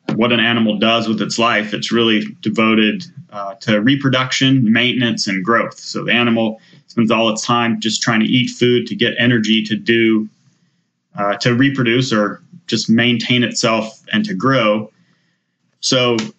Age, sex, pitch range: 30-49, male, 110-130 Hz